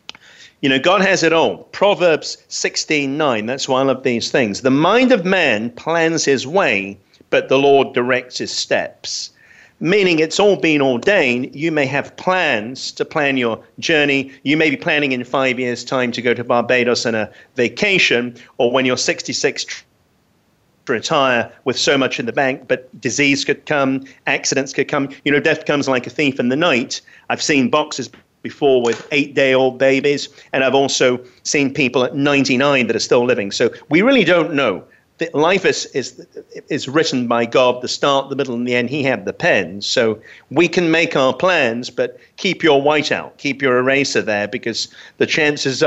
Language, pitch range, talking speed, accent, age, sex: English, 125-155 Hz, 190 wpm, British, 40-59, male